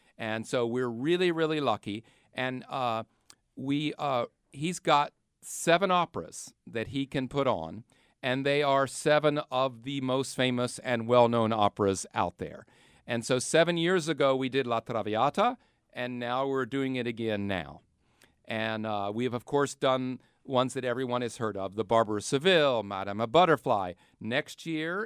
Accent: American